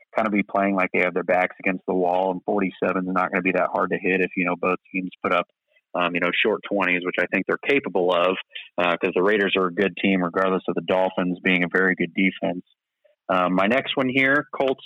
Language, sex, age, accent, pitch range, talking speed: English, male, 30-49, American, 95-120 Hz, 260 wpm